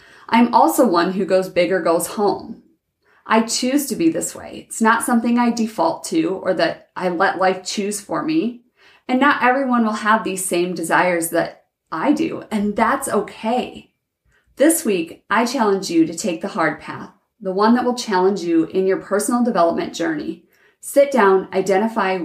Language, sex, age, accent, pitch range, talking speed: English, female, 30-49, American, 180-225 Hz, 180 wpm